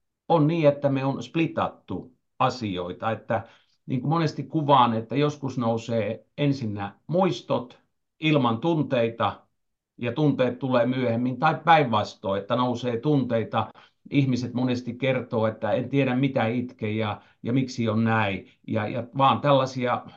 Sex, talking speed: male, 135 wpm